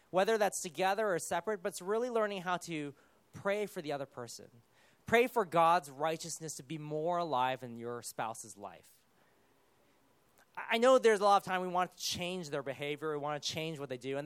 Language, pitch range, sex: English, 140-200 Hz, male